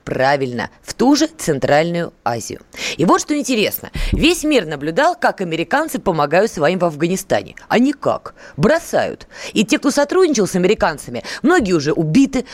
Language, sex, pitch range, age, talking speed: Russian, female, 180-260 Hz, 20-39, 150 wpm